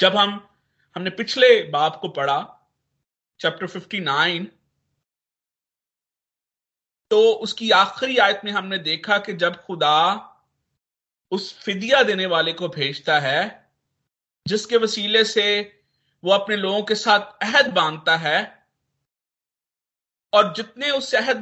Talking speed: 120 wpm